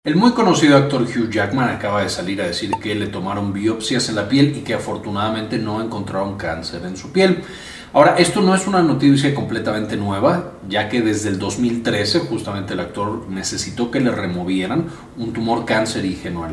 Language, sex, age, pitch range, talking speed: Spanish, male, 40-59, 105-150 Hz, 185 wpm